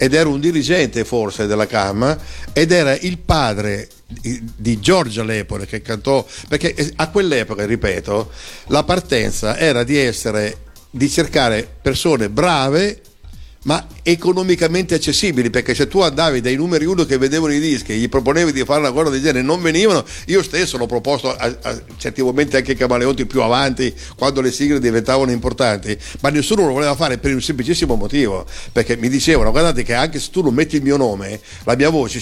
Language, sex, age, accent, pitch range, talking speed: Italian, male, 60-79, native, 120-155 Hz, 175 wpm